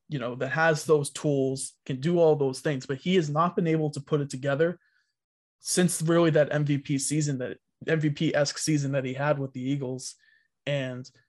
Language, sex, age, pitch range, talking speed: English, male, 20-39, 135-160 Hz, 195 wpm